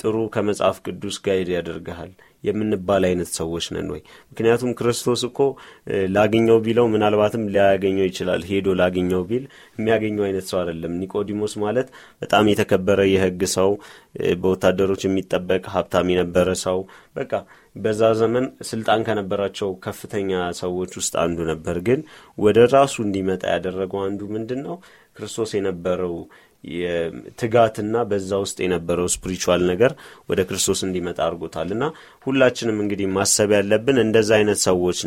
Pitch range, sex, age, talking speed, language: 90-110 Hz, male, 30-49, 120 wpm, Amharic